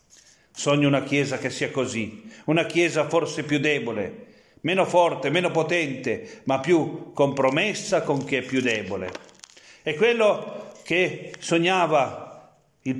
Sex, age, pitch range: male, 40-59, 125-160 Hz